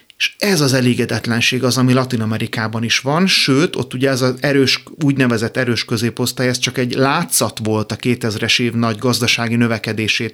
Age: 30-49